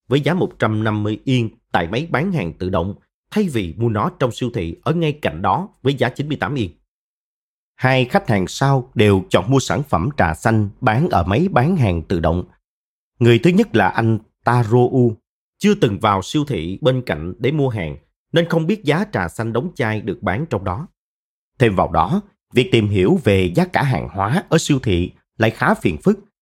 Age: 30-49